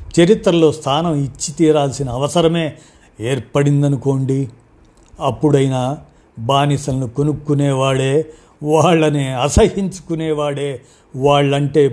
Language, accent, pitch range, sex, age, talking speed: Telugu, native, 125-150 Hz, male, 50-69, 60 wpm